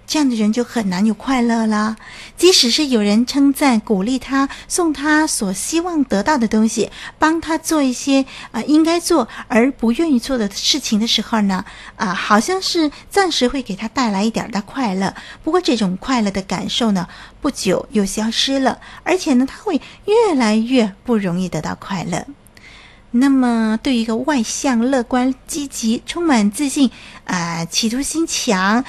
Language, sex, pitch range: Chinese, female, 205-270 Hz